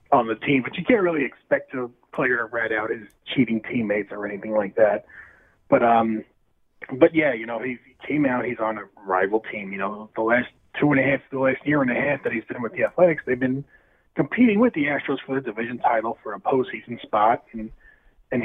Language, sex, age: English, male, 30-49